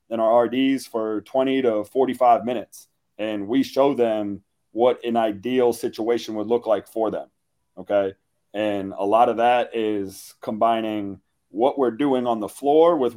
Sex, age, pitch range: male, 30-49, 110-130 Hz